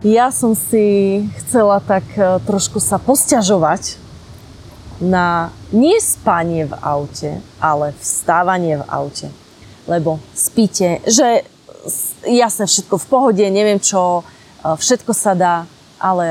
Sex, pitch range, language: female, 170-210 Hz, Slovak